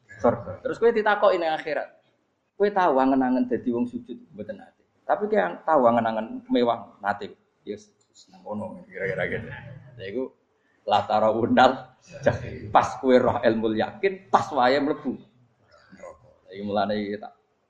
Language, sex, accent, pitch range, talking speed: Indonesian, male, native, 105-160 Hz, 130 wpm